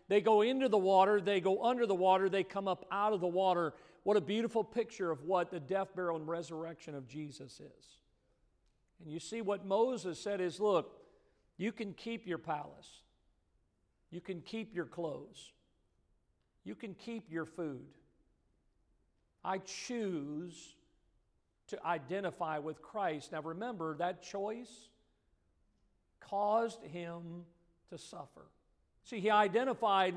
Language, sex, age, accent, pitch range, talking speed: English, male, 50-69, American, 185-235 Hz, 140 wpm